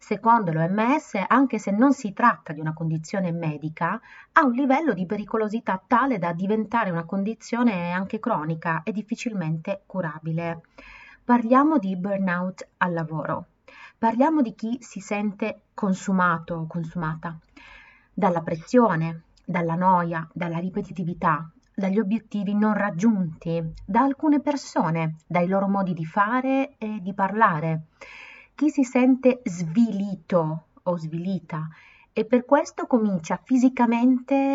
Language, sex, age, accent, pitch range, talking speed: Italian, female, 30-49, native, 170-225 Hz, 120 wpm